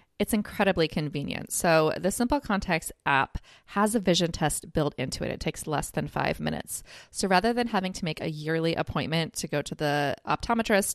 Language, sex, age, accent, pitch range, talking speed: English, female, 20-39, American, 155-200 Hz, 190 wpm